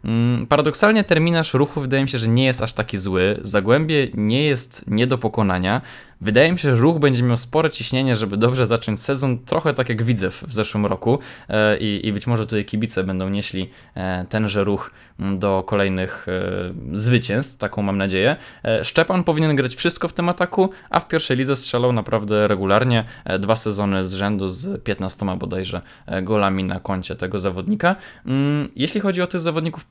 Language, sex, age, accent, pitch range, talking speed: Polish, male, 20-39, native, 105-140 Hz, 170 wpm